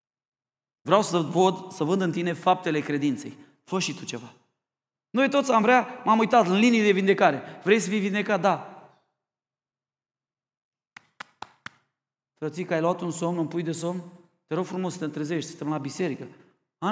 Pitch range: 190-265 Hz